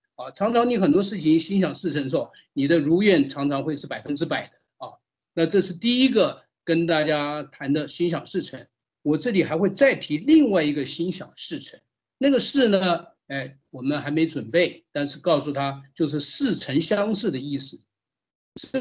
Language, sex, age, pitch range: Chinese, male, 50-69, 150-210 Hz